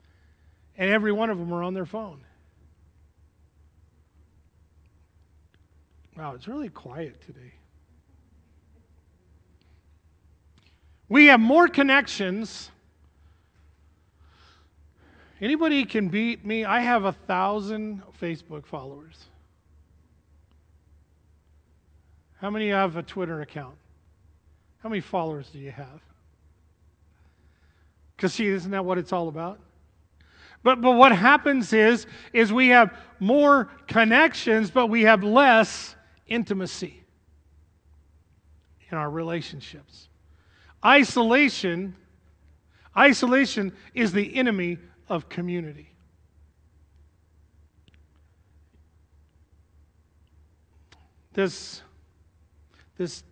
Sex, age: male, 40-59